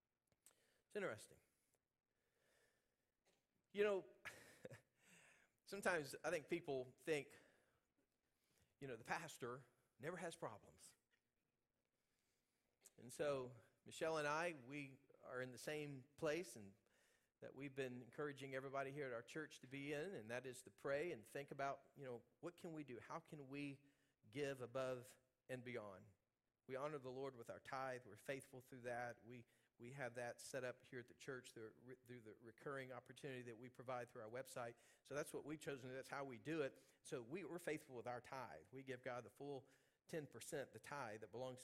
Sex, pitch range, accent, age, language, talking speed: male, 125-145 Hz, American, 40-59, English, 175 wpm